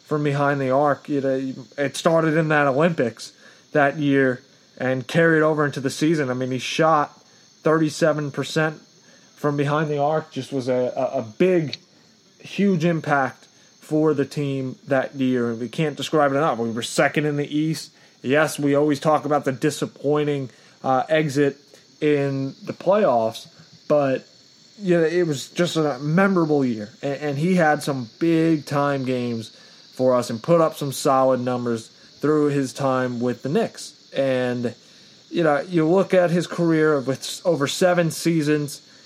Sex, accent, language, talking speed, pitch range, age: male, American, English, 170 wpm, 135-160 Hz, 30-49